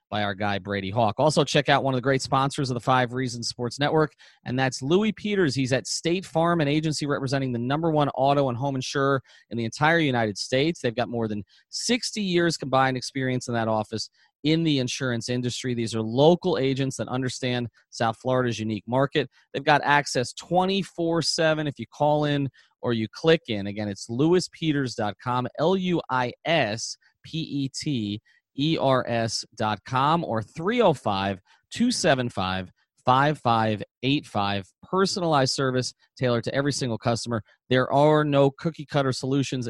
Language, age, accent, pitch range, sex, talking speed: English, 30-49, American, 115-150 Hz, male, 150 wpm